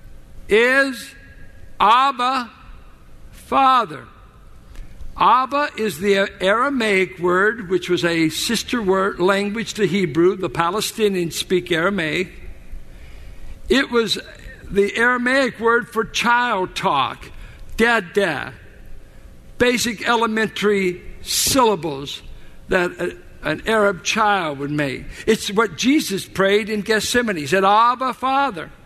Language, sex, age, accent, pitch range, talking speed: English, male, 60-79, American, 185-250 Hz, 100 wpm